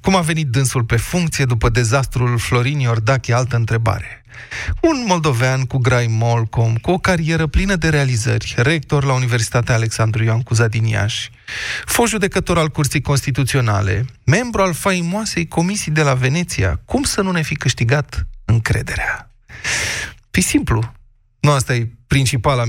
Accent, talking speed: native, 145 wpm